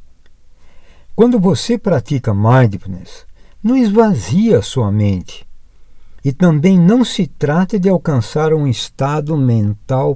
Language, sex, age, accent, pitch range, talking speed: Portuguese, male, 60-79, Brazilian, 105-175 Hz, 110 wpm